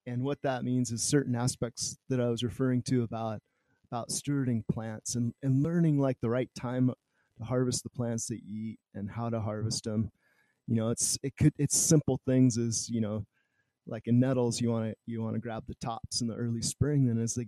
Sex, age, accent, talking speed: male, 30-49, American, 225 wpm